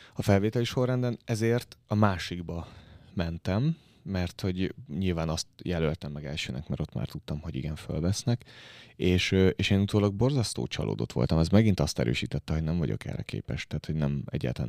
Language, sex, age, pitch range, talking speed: Hungarian, male, 30-49, 75-100 Hz, 170 wpm